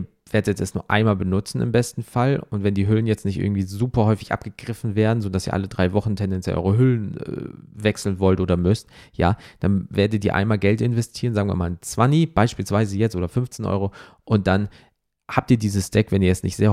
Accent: German